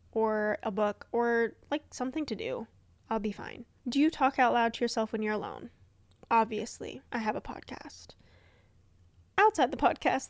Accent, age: American, 10-29